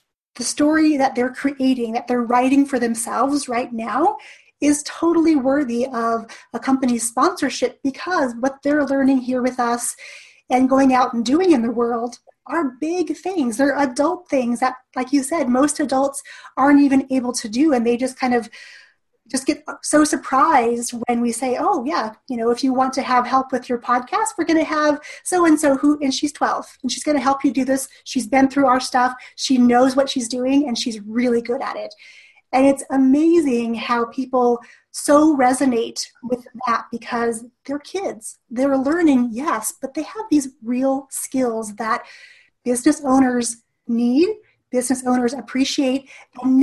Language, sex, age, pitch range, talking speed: English, female, 30-49, 245-290 Hz, 180 wpm